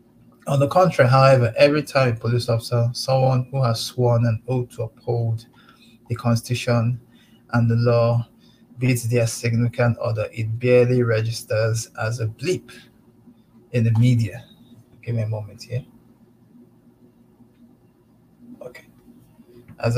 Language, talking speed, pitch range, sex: English, 125 wpm, 115-125 Hz, male